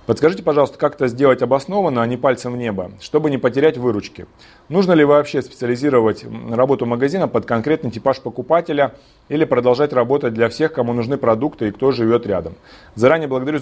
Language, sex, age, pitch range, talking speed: Russian, male, 30-49, 120-160 Hz, 170 wpm